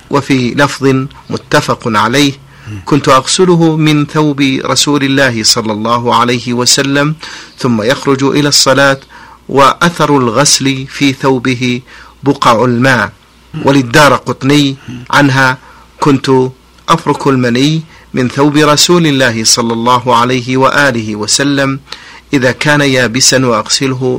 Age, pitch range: 50-69, 125-145 Hz